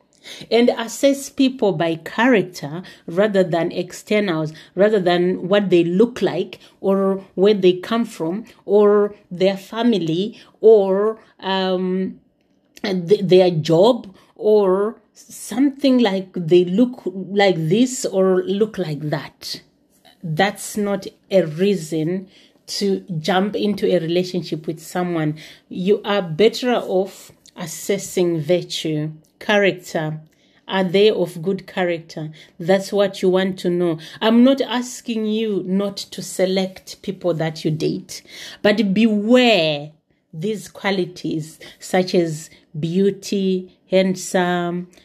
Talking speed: 115 wpm